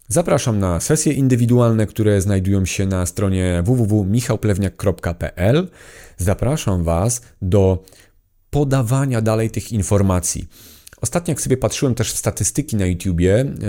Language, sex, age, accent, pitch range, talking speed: Polish, male, 40-59, native, 95-125 Hz, 115 wpm